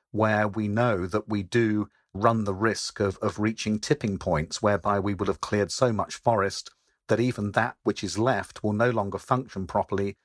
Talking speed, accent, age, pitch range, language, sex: 195 wpm, British, 40-59, 95-110 Hz, English, male